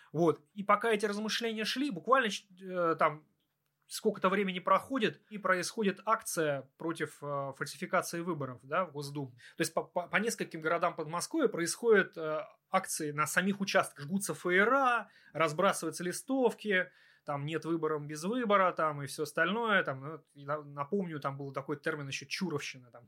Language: Russian